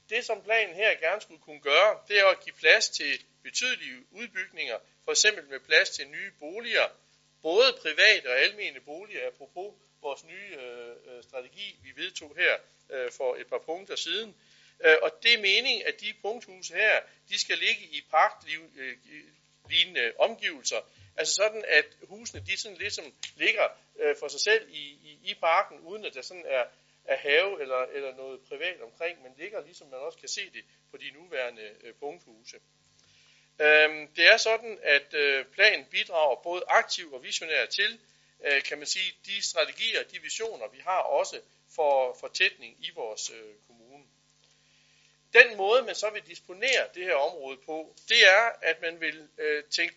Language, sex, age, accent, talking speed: Danish, male, 60-79, native, 165 wpm